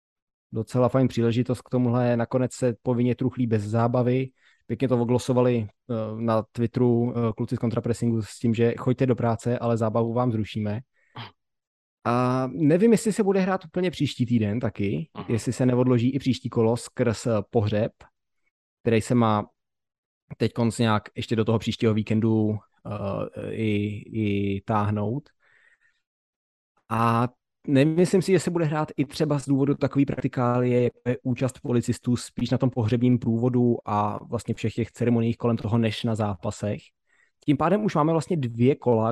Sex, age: male, 20-39